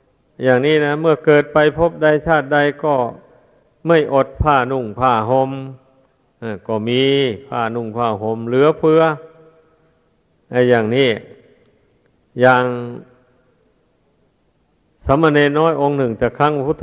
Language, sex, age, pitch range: Thai, male, 60-79, 125-150 Hz